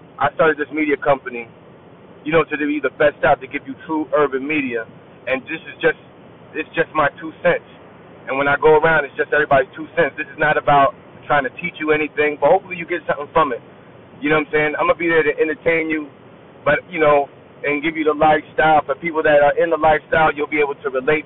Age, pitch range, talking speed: 30-49, 145-170 Hz, 245 wpm